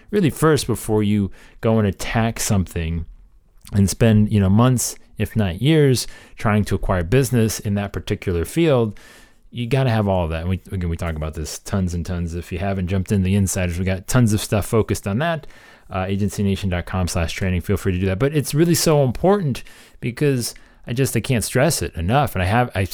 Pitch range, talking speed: 95-125 Hz, 210 wpm